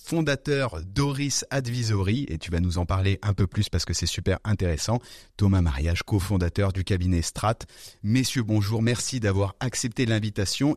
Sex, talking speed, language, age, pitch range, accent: male, 160 wpm, French, 30-49, 105-130 Hz, French